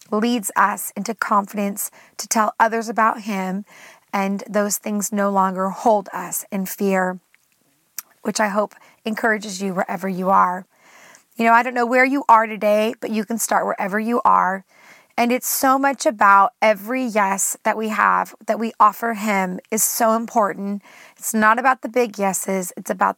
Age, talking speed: 30-49, 175 wpm